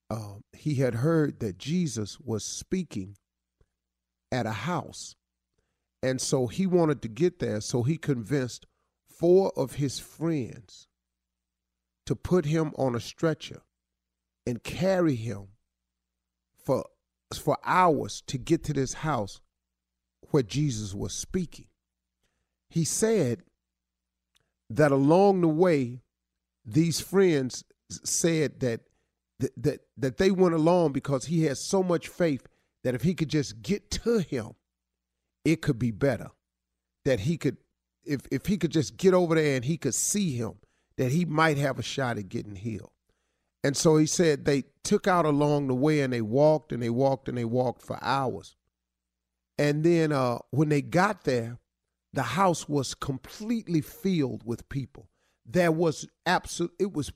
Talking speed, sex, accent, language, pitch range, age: 150 wpm, male, American, English, 95-160 Hz, 40-59